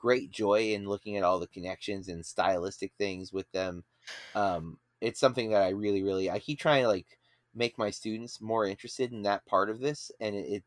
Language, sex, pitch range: English, male, 95-120 Hz